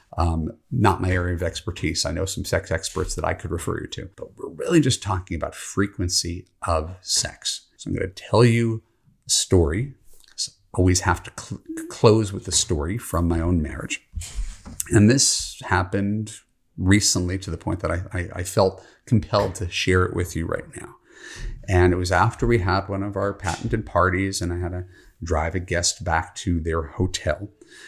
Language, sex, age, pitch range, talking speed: English, male, 40-59, 85-105 Hz, 195 wpm